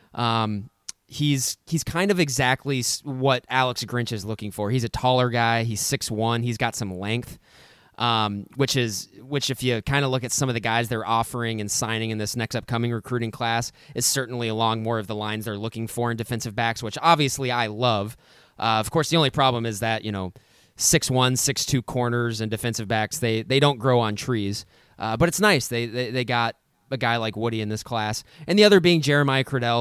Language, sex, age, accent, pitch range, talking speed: English, male, 20-39, American, 115-130 Hz, 220 wpm